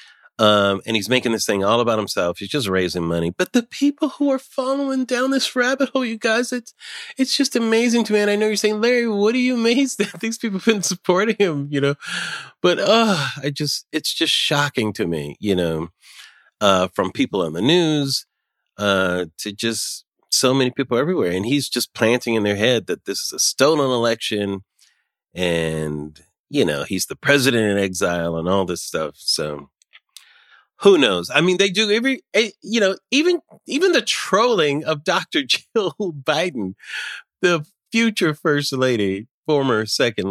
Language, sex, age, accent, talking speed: English, male, 30-49, American, 185 wpm